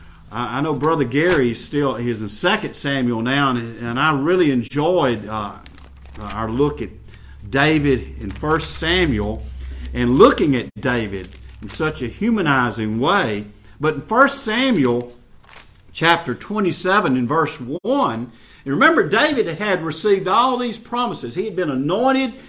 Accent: American